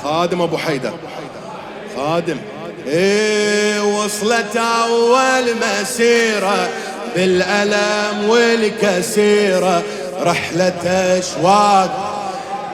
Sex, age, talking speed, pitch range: male, 30-49, 55 wpm, 205-240 Hz